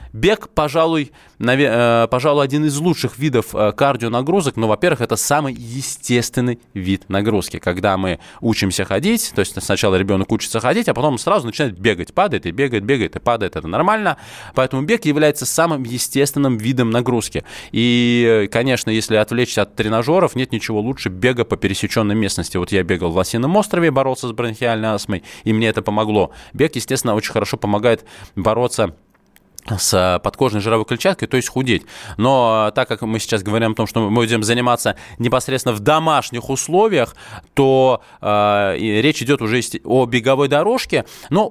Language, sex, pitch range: Russian, male, 105-135 Hz